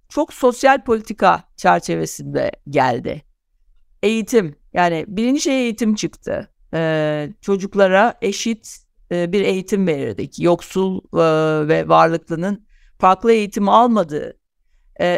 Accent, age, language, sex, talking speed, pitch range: native, 60-79, Turkish, female, 105 wpm, 165-220 Hz